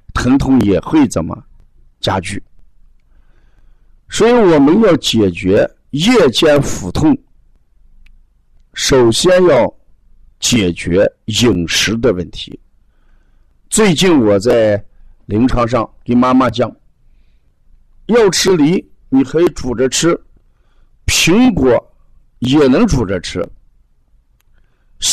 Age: 50-69